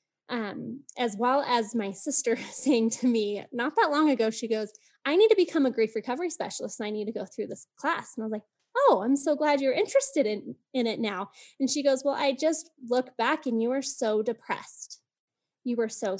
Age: 10-29